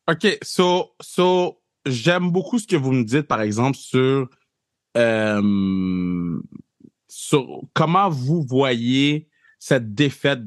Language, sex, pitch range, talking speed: French, male, 135-200 Hz, 115 wpm